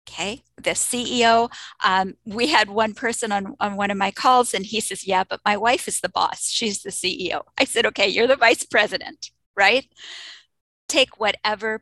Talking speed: 190 wpm